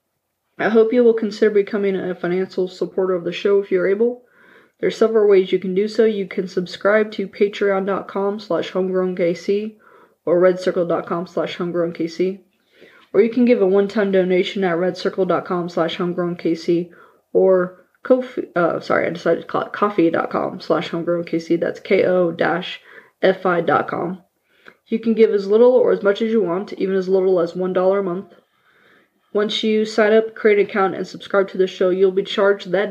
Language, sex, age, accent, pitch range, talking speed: English, female, 20-39, American, 180-205 Hz, 180 wpm